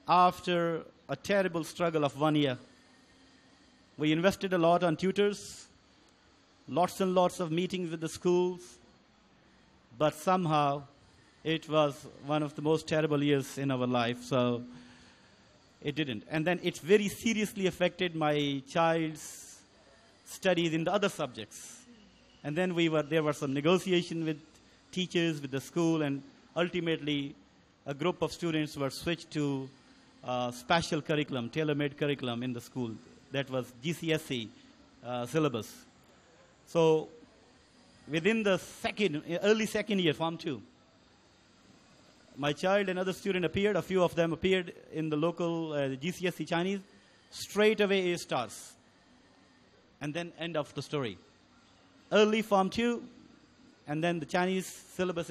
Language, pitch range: Chinese, 145-180 Hz